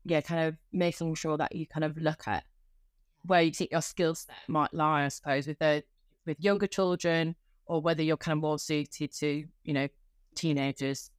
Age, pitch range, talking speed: 20-39, 150-180 Hz, 195 wpm